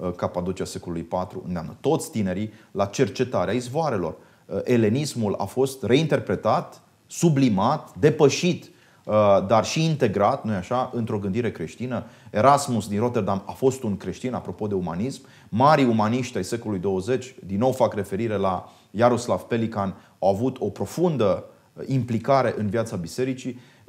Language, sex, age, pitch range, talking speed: Romanian, male, 30-49, 105-135 Hz, 135 wpm